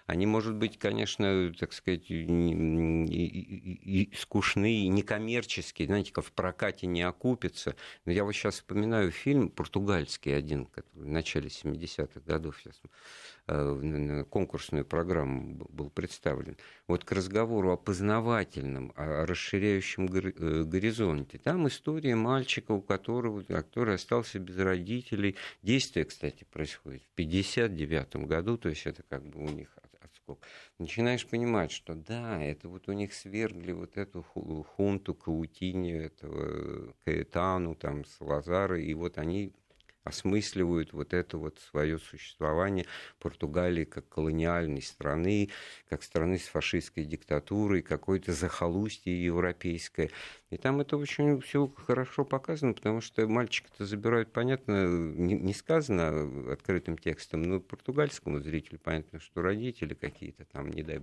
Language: Russian